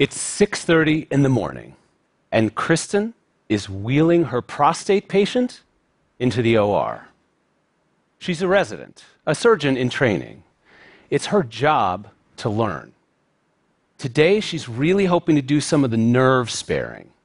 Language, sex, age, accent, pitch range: Chinese, male, 40-59, American, 120-175 Hz